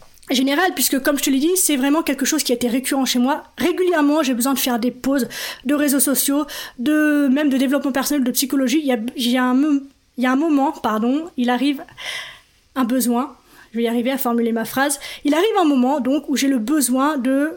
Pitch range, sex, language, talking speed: 255-315 Hz, female, French, 240 wpm